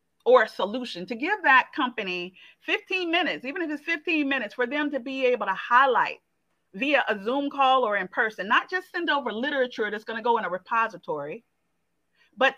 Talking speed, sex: 190 wpm, female